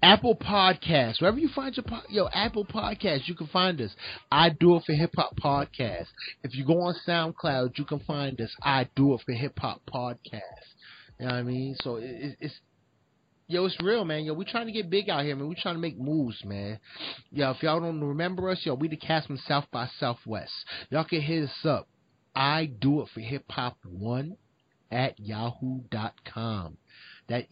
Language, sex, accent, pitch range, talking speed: English, male, American, 125-175 Hz, 205 wpm